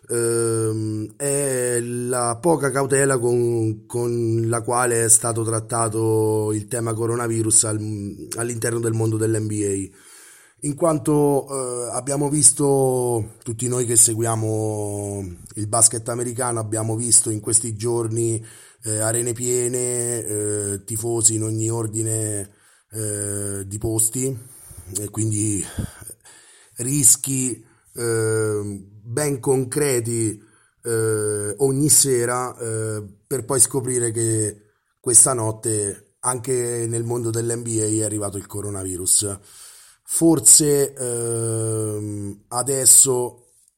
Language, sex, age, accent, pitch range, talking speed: Italian, male, 30-49, native, 110-120 Hz, 95 wpm